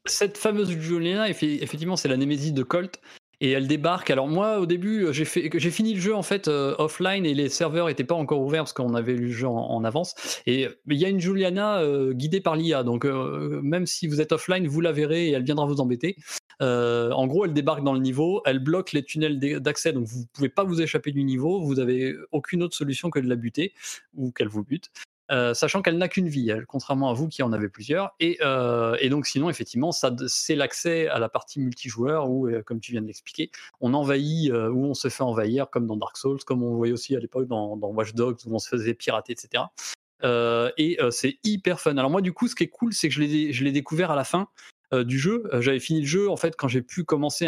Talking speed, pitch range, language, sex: 250 wpm, 130-175 Hz, French, male